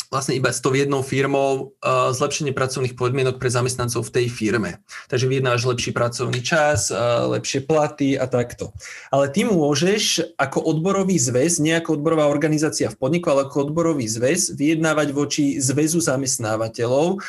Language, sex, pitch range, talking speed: Slovak, male, 130-170 Hz, 155 wpm